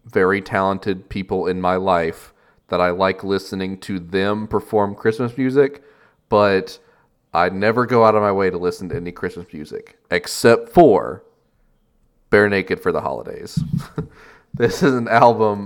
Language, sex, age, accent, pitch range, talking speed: English, male, 30-49, American, 90-110 Hz, 155 wpm